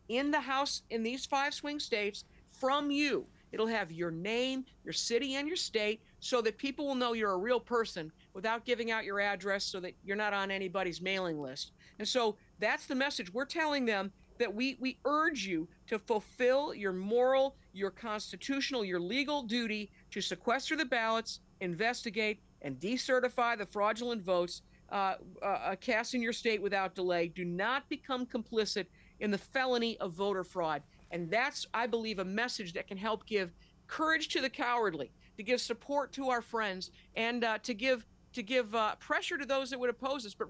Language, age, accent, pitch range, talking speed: English, 50-69, American, 205-265 Hz, 185 wpm